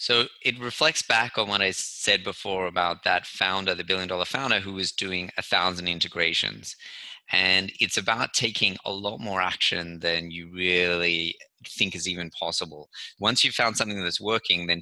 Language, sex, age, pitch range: English, male, 20-39, 90-105 Hz